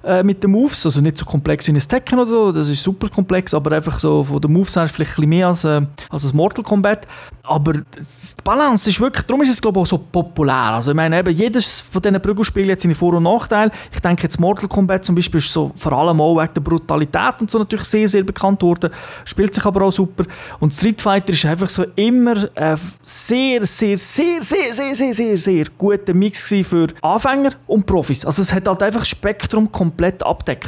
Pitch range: 170-215 Hz